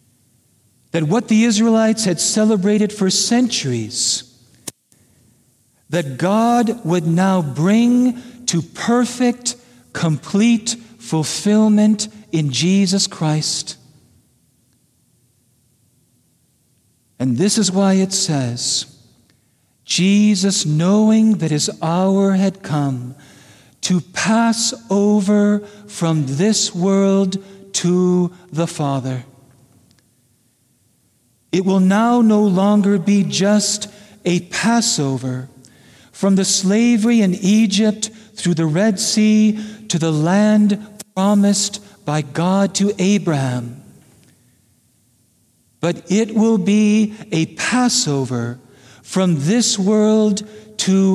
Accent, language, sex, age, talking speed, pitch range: American, English, male, 50-69, 90 wpm, 130-210 Hz